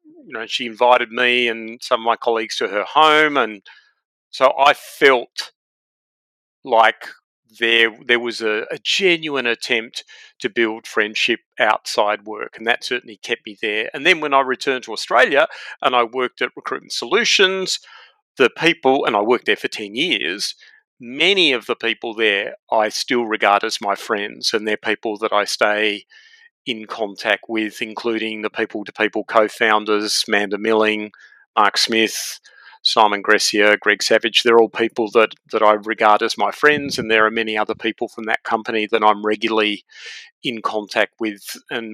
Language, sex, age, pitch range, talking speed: English, male, 40-59, 110-130 Hz, 165 wpm